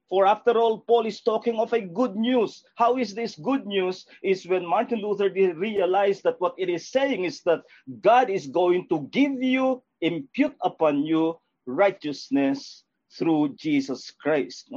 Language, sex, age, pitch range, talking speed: English, male, 50-69, 165-240 Hz, 165 wpm